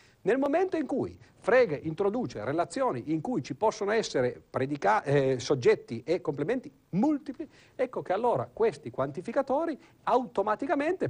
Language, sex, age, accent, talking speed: Italian, male, 50-69, native, 130 wpm